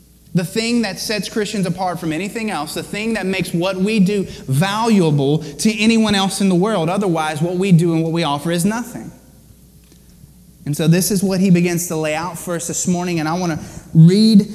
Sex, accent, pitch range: male, American, 135-175 Hz